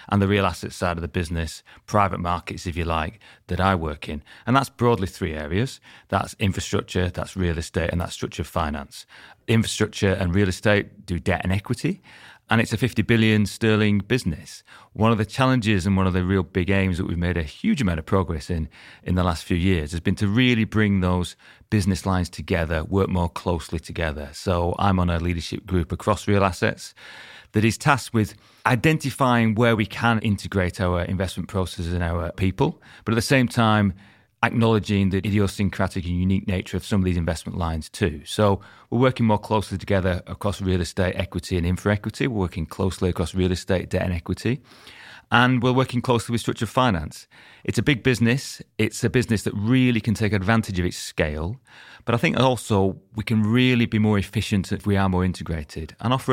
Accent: British